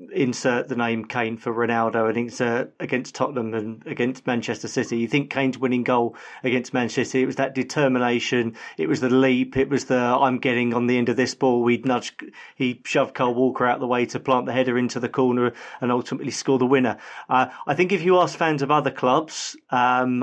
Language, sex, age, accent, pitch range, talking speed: English, male, 30-49, British, 125-145 Hz, 215 wpm